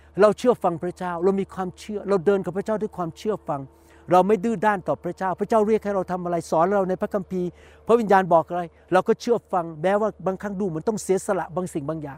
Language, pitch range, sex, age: Thai, 165-210 Hz, male, 60-79